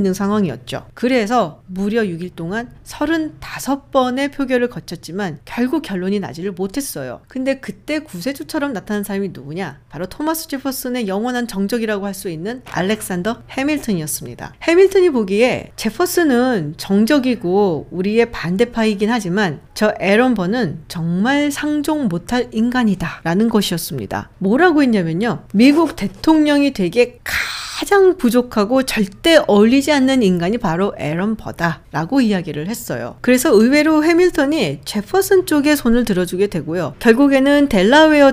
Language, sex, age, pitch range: Korean, female, 40-59, 185-275 Hz